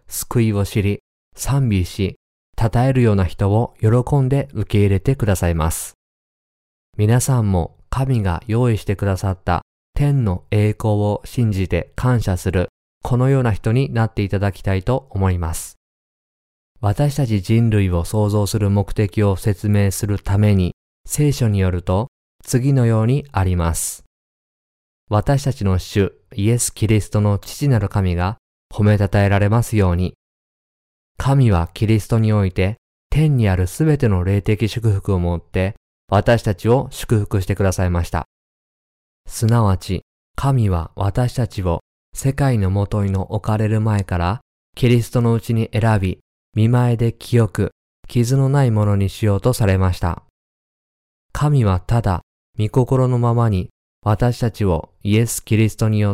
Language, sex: Japanese, male